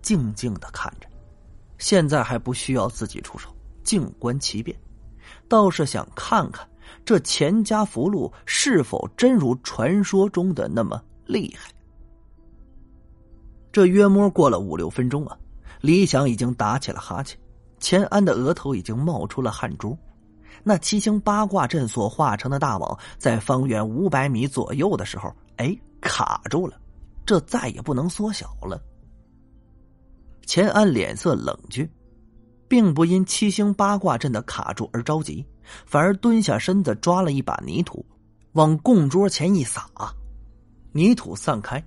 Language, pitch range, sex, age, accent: Chinese, 115-185 Hz, male, 30-49, native